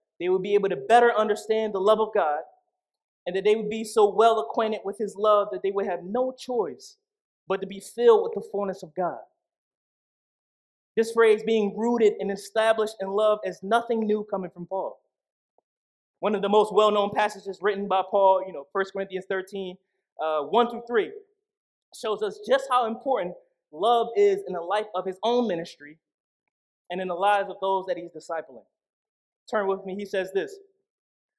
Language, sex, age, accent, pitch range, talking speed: English, male, 20-39, American, 190-230 Hz, 185 wpm